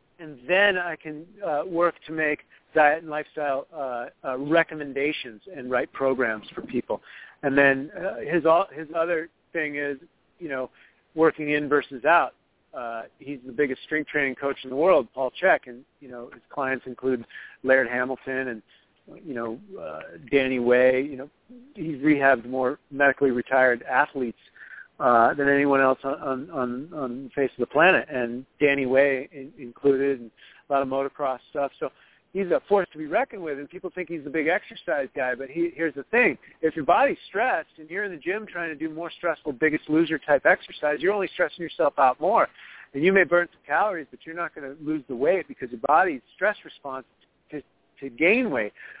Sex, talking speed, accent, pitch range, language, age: male, 195 wpm, American, 130-160 Hz, English, 40-59